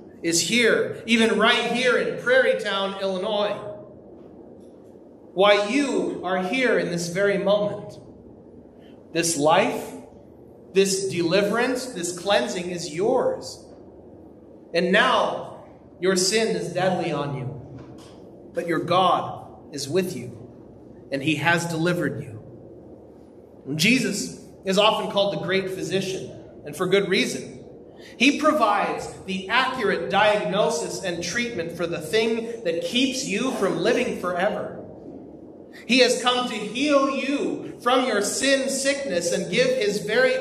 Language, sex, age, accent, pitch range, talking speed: English, male, 30-49, American, 170-230 Hz, 125 wpm